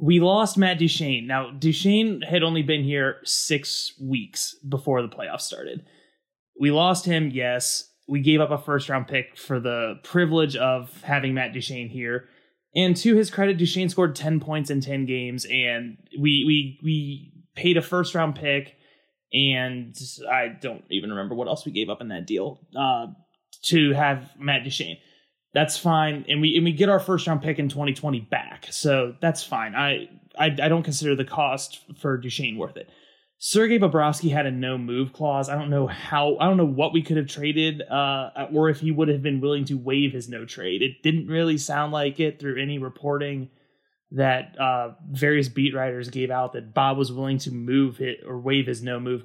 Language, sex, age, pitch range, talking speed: English, male, 20-39, 130-160 Hz, 195 wpm